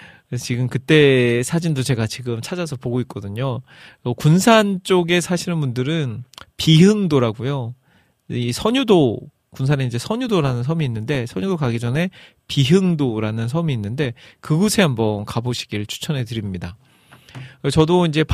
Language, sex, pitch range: Korean, male, 120-160 Hz